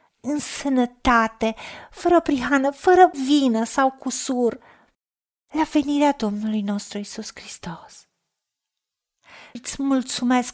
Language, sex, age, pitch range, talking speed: Romanian, female, 40-59, 225-275 Hz, 90 wpm